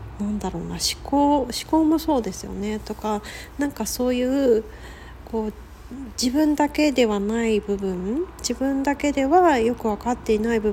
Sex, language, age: female, Japanese, 40-59